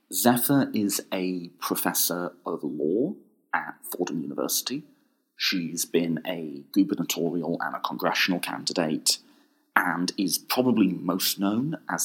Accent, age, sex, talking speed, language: British, 30-49, male, 115 wpm, English